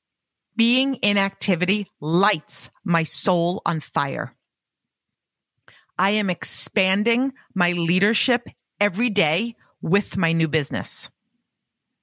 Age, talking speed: 40-59, 95 wpm